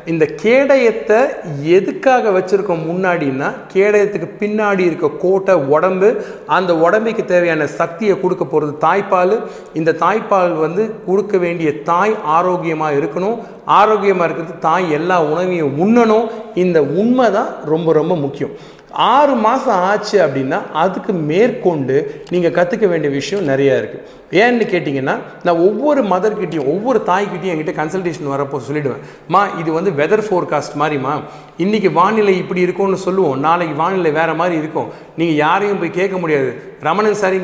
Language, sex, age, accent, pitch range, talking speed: Tamil, male, 40-59, native, 160-210 Hz, 135 wpm